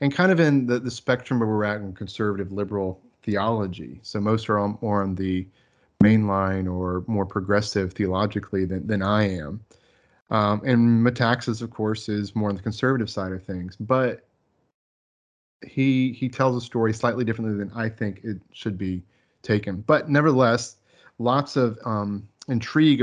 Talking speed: 165 wpm